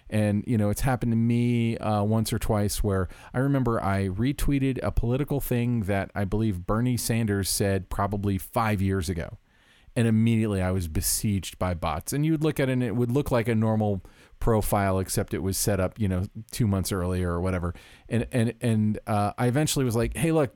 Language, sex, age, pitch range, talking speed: English, male, 40-59, 95-120 Hz, 210 wpm